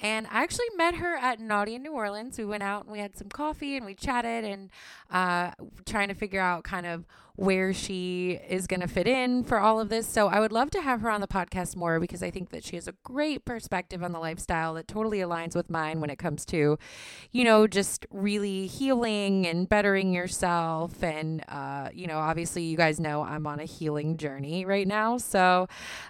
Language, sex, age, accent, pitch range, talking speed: English, female, 20-39, American, 175-220 Hz, 225 wpm